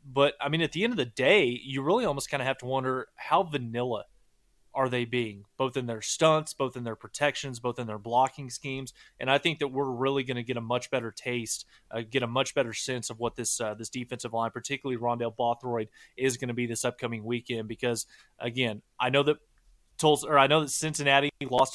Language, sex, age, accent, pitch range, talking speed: English, male, 20-39, American, 120-150 Hz, 230 wpm